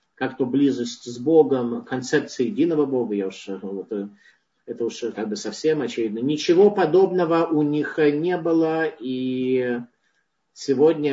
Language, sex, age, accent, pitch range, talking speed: Russian, male, 50-69, native, 130-175 Hz, 130 wpm